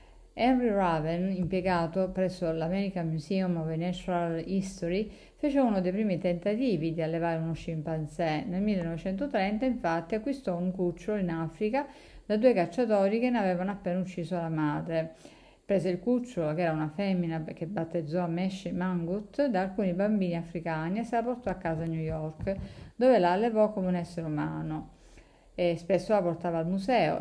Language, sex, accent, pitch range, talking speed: Italian, female, native, 165-200 Hz, 165 wpm